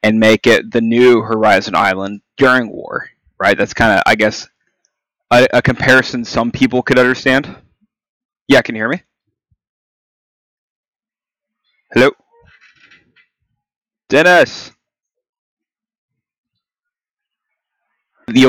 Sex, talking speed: male, 95 wpm